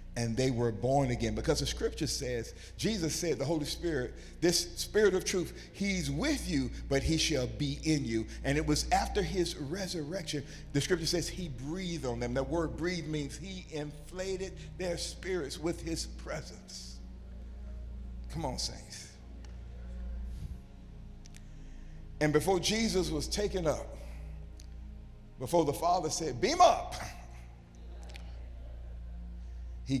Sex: male